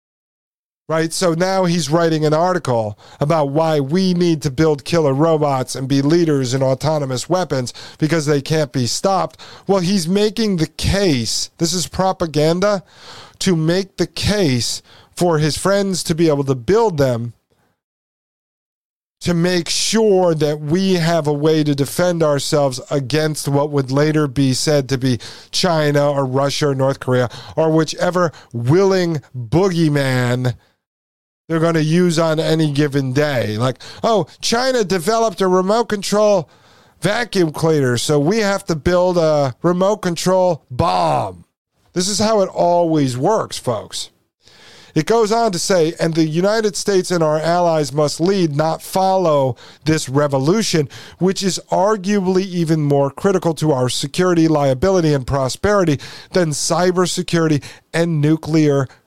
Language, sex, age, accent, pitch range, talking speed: English, male, 40-59, American, 140-180 Hz, 145 wpm